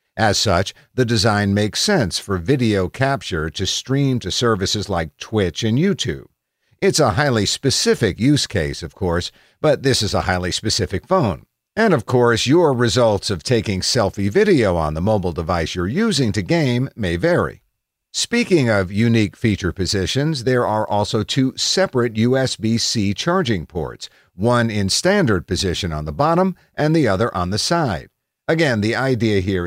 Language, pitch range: English, 95-125 Hz